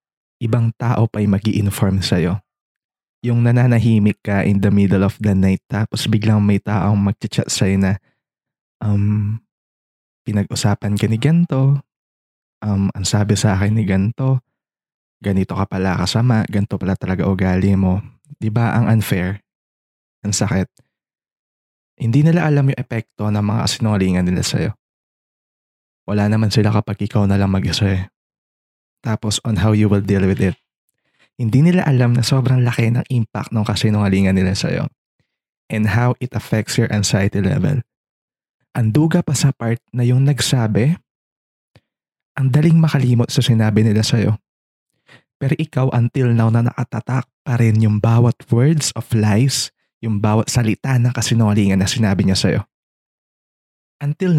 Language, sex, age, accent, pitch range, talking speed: English, male, 20-39, Filipino, 100-125 Hz, 145 wpm